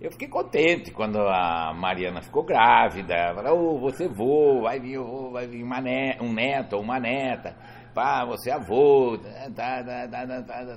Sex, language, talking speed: male, Portuguese, 180 wpm